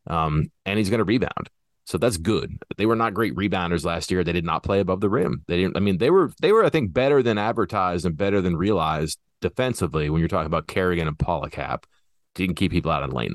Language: English